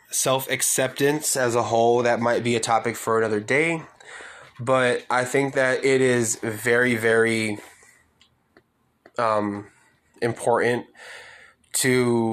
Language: English